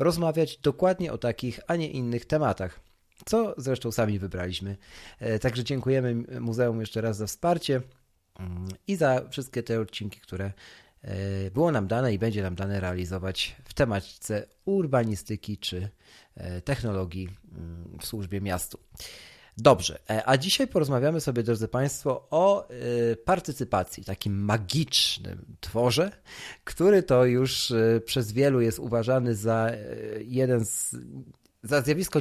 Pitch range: 105-135 Hz